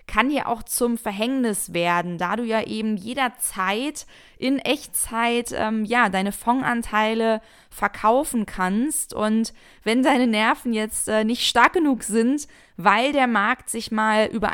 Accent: German